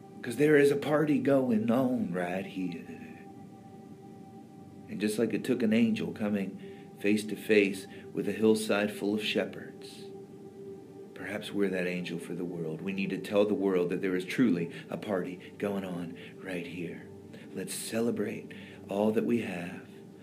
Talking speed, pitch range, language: 165 wpm, 100-115 Hz, English